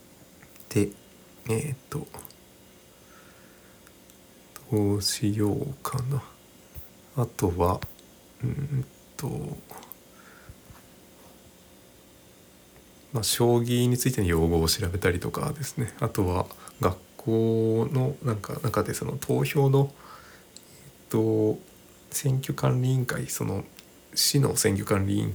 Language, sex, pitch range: Japanese, male, 90-120 Hz